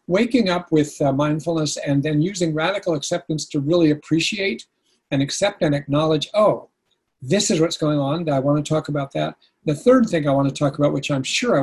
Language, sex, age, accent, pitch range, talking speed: English, male, 50-69, American, 145-175 Hz, 210 wpm